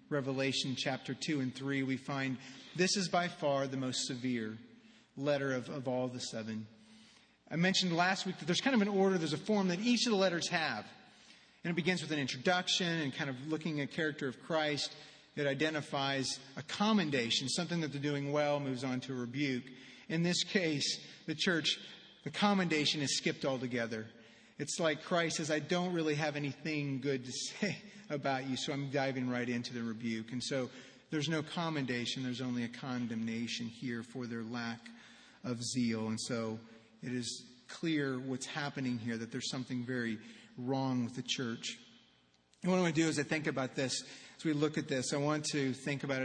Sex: male